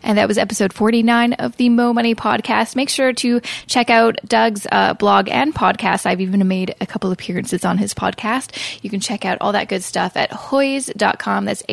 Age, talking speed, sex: 10-29, 205 wpm, female